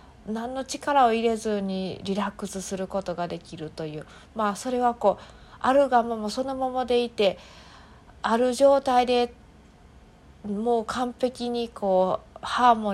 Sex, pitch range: female, 170-230 Hz